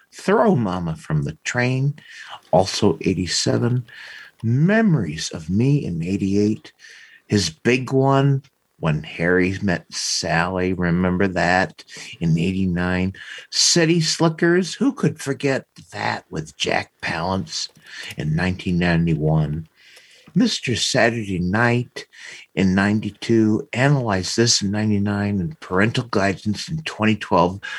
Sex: male